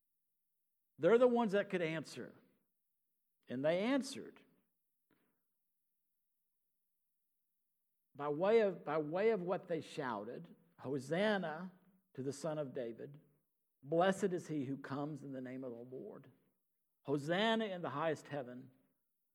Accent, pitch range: American, 130-175 Hz